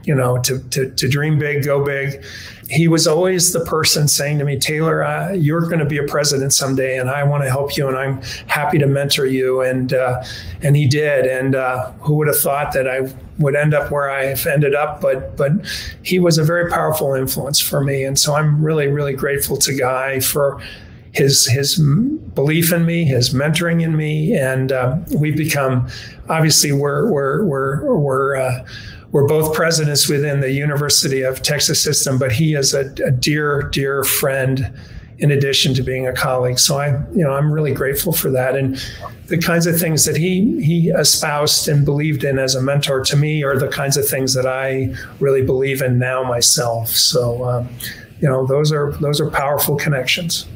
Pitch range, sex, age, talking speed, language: 130-150 Hz, male, 40-59, 200 wpm, English